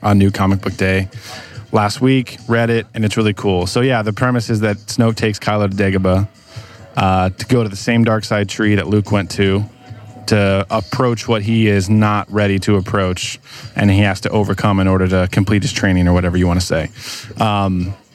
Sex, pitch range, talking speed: male, 95-115 Hz, 210 wpm